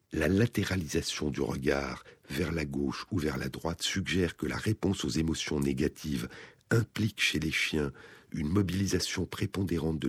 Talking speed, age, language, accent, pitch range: 155 wpm, 50-69, French, French, 70-100 Hz